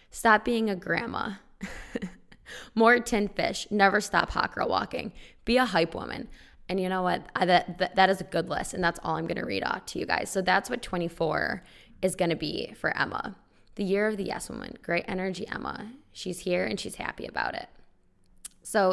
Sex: female